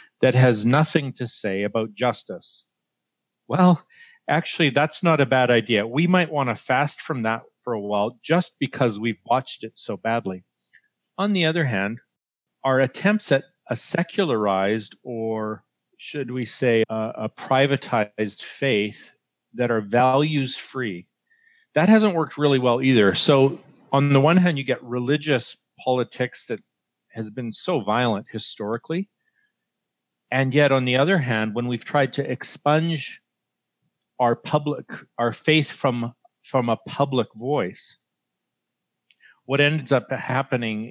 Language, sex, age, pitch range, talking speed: English, male, 40-59, 115-155 Hz, 140 wpm